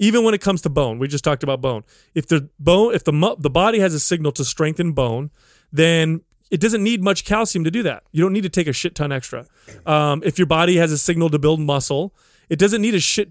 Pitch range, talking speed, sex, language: 135-180 Hz, 255 wpm, male, English